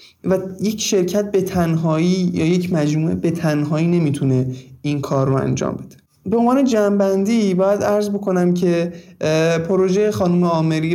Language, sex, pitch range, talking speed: Persian, male, 140-185 Hz, 145 wpm